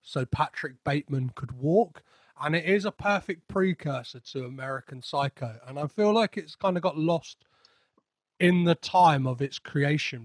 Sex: male